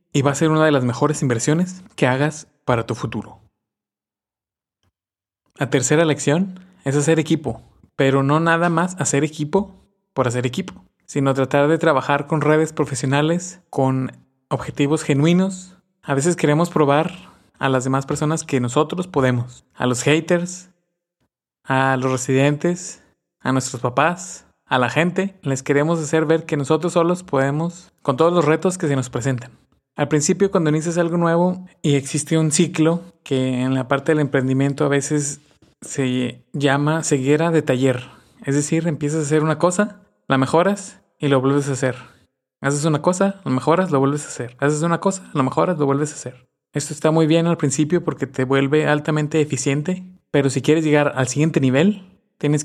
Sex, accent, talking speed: male, Mexican, 175 wpm